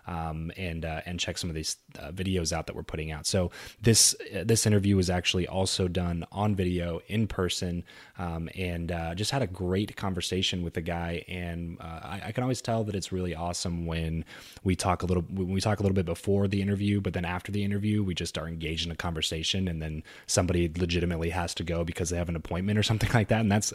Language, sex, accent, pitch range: English, male, American, 85-105 Hz